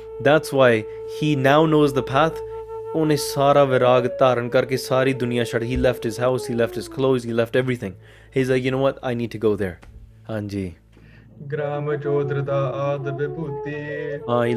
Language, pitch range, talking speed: English, 115-145 Hz, 120 wpm